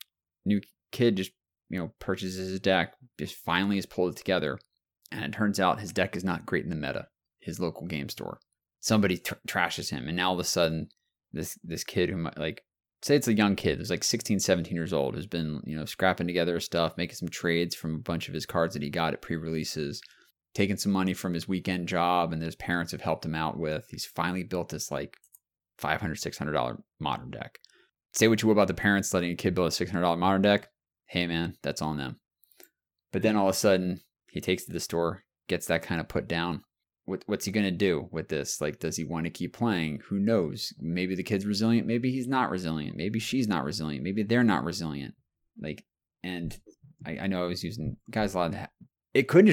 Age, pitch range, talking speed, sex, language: 20-39, 85-105 Hz, 230 wpm, male, English